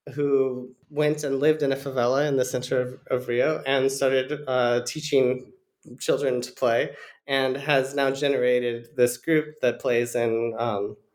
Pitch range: 125-150 Hz